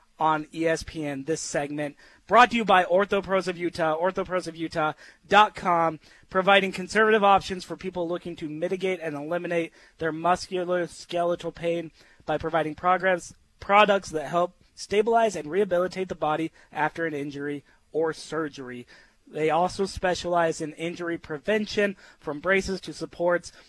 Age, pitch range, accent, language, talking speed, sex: 20-39, 160-195 Hz, American, English, 125 wpm, male